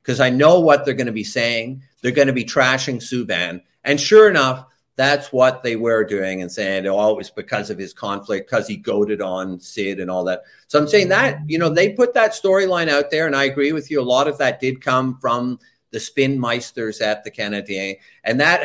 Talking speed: 225 wpm